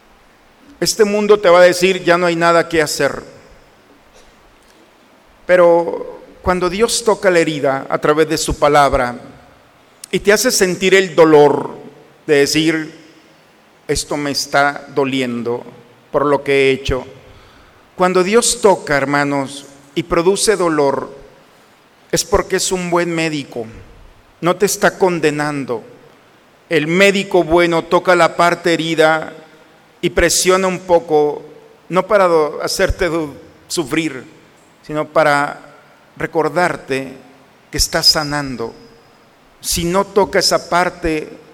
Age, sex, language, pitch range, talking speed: 50-69, male, Spanish, 145-180 Hz, 125 wpm